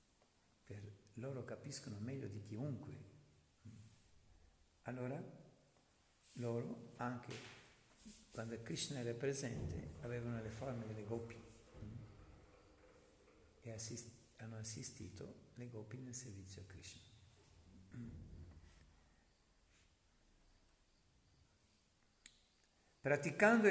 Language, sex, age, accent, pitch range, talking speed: Italian, male, 50-69, native, 110-150 Hz, 70 wpm